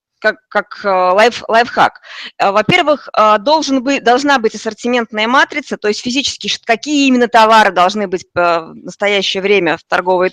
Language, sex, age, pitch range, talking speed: Russian, female, 20-39, 200-255 Hz, 120 wpm